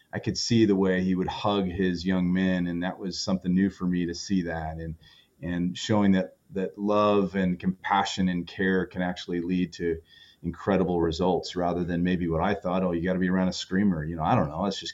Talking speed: 235 wpm